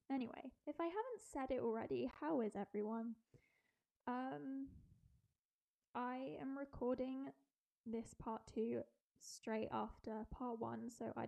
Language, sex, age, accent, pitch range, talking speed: English, female, 10-29, British, 220-255 Hz, 120 wpm